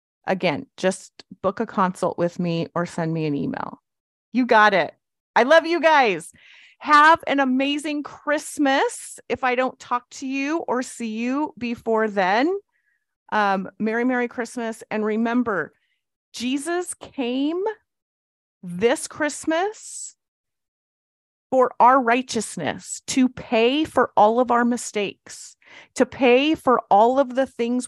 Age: 30-49